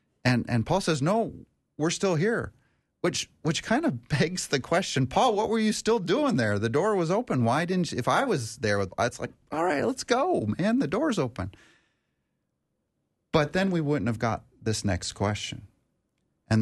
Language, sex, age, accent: English, male, 30-49, American